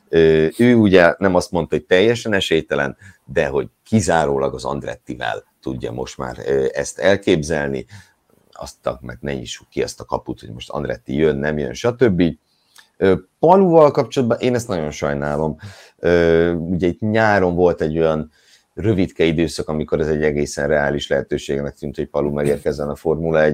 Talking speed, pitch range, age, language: 150 wpm, 75-95 Hz, 50-69, Hungarian